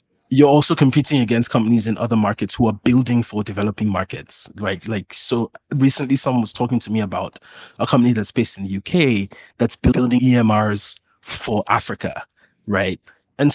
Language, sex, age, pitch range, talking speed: English, male, 20-39, 105-135 Hz, 170 wpm